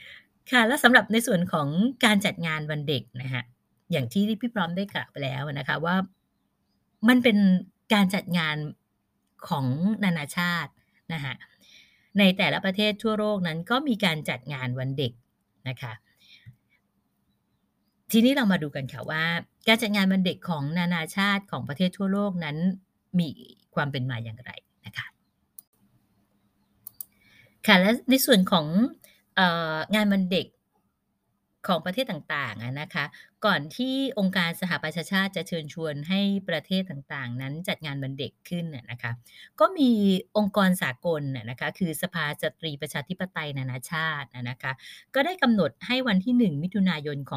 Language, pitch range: Thai, 140-195 Hz